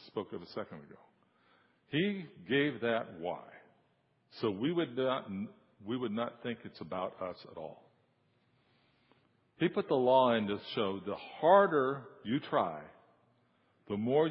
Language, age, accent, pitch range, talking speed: English, 60-79, American, 110-145 Hz, 145 wpm